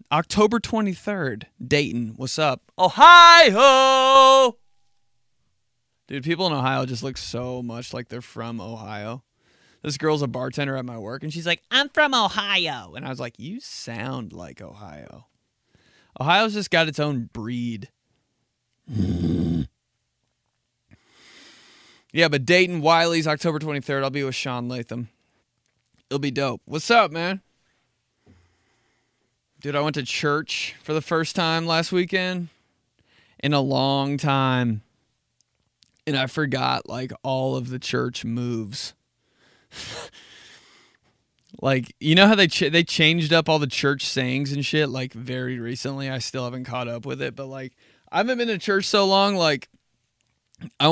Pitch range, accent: 120-160 Hz, American